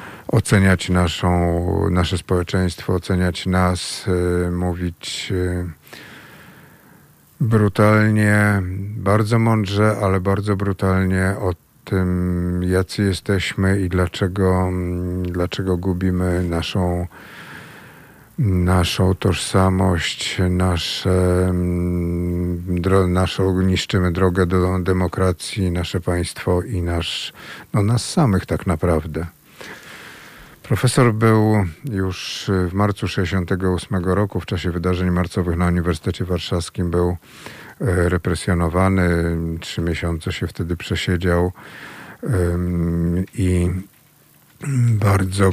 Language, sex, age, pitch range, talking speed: Polish, male, 50-69, 90-95 Hz, 85 wpm